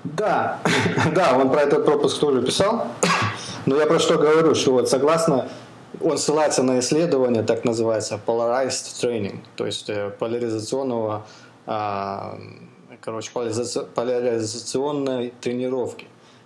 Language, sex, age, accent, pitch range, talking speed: Russian, male, 20-39, native, 105-140 Hz, 110 wpm